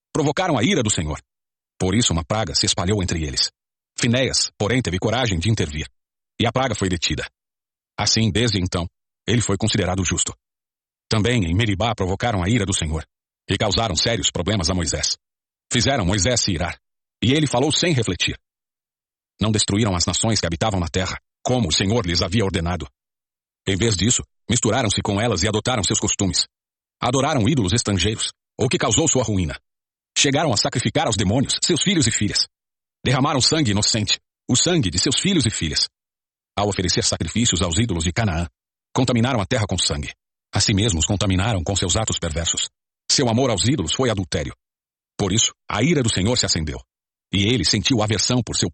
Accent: Brazilian